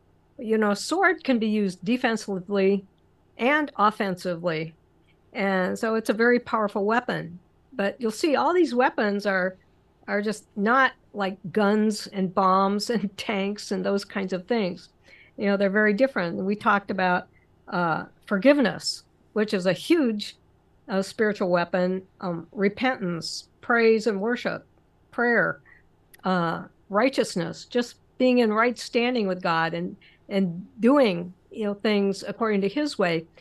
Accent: American